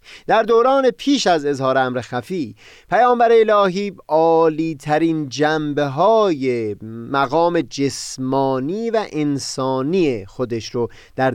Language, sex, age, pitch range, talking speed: Persian, male, 30-49, 125-180 Hz, 100 wpm